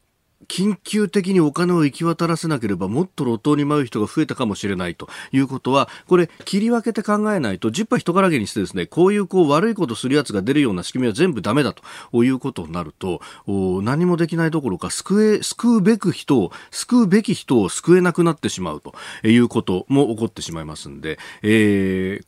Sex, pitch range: male, 100-160 Hz